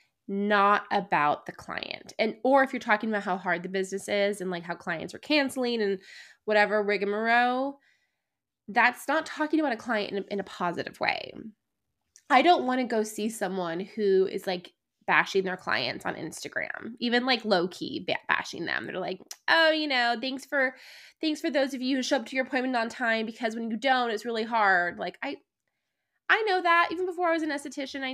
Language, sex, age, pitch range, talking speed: English, female, 20-39, 200-280 Hz, 205 wpm